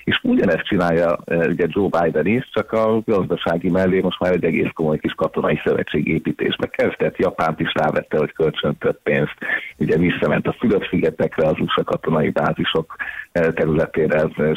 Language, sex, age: Hungarian, male, 50-69